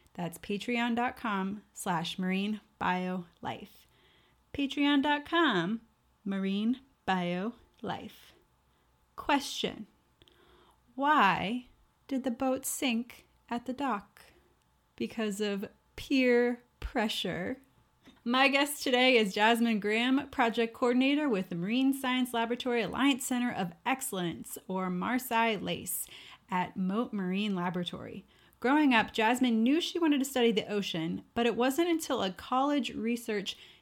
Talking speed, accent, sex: 110 wpm, American, female